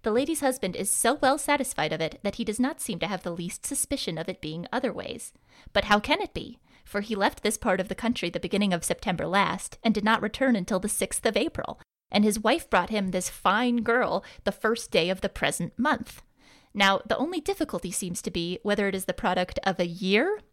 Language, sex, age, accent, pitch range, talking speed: English, female, 20-39, American, 180-235 Hz, 235 wpm